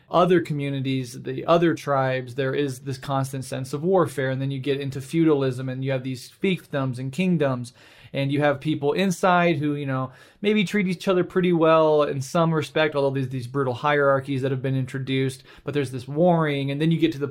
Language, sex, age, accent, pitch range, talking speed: English, male, 20-39, American, 135-155 Hz, 210 wpm